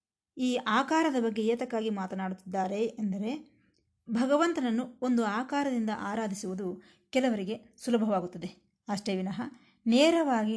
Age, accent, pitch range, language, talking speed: 20-39, native, 195-250 Hz, Kannada, 85 wpm